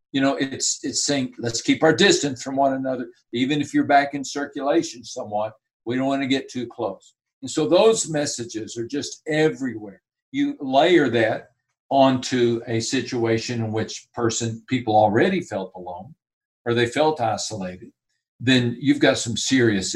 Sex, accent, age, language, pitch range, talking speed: male, American, 60-79, English, 115-145 Hz, 165 wpm